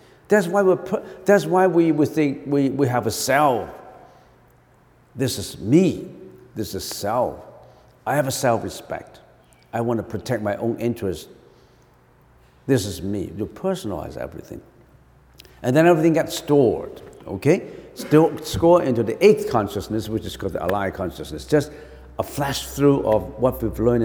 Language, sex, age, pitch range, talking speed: English, male, 60-79, 105-145 Hz, 155 wpm